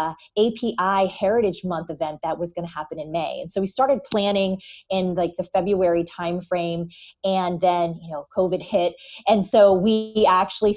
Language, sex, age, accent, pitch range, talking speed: English, female, 30-49, American, 175-215 Hz, 180 wpm